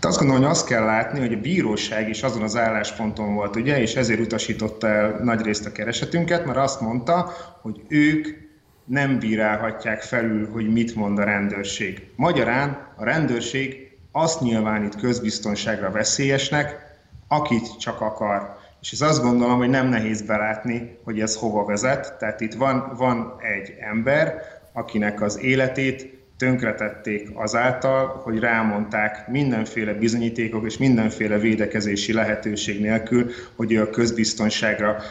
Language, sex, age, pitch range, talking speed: Hungarian, male, 30-49, 110-130 Hz, 140 wpm